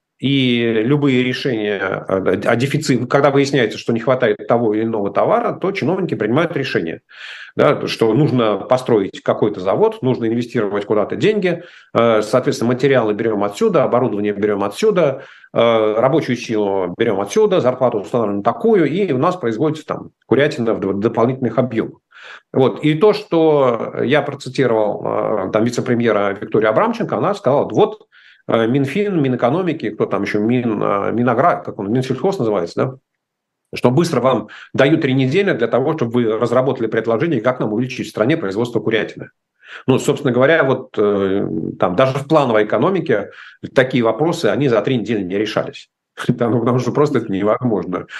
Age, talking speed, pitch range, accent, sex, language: 40-59, 140 wpm, 110-140 Hz, native, male, Russian